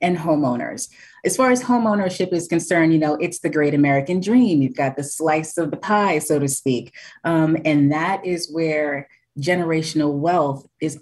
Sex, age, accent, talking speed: female, 30-49, American, 180 wpm